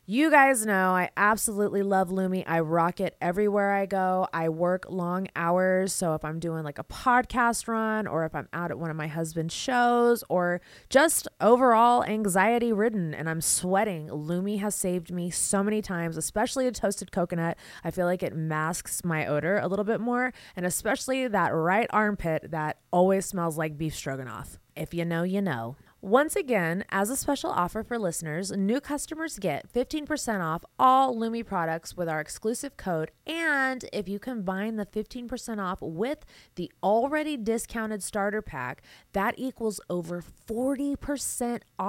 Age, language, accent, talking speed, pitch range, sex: 20-39, English, American, 170 wpm, 170-230 Hz, female